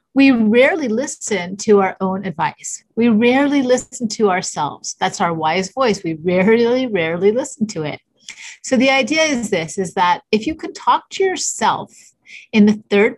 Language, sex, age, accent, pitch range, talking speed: English, female, 30-49, American, 175-225 Hz, 175 wpm